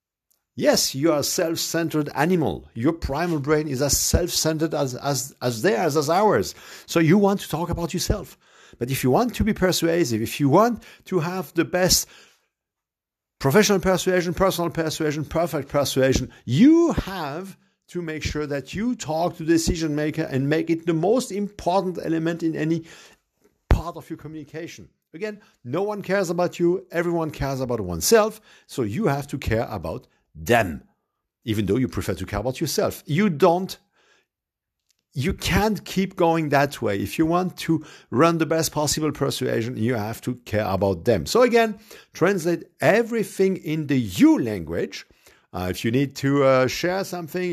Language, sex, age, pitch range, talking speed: English, male, 50-69, 130-180 Hz, 170 wpm